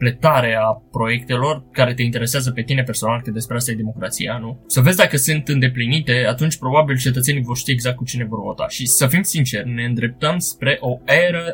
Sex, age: male, 20-39